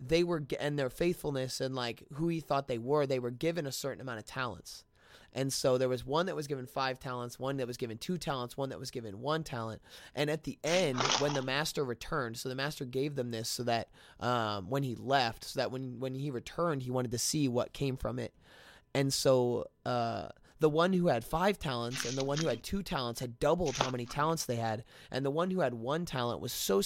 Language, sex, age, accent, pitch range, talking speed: English, male, 20-39, American, 120-155 Hz, 240 wpm